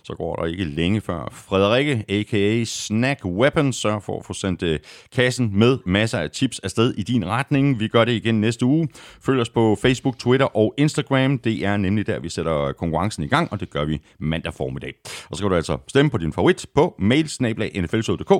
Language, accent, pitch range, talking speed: Danish, native, 95-130 Hz, 205 wpm